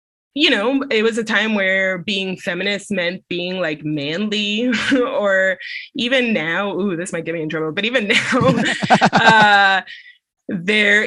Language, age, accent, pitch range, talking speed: English, 20-39, American, 175-230 Hz, 150 wpm